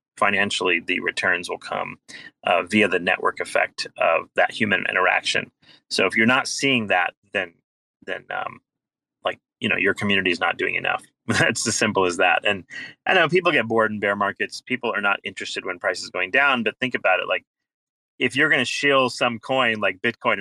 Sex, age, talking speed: male, 30-49, 205 wpm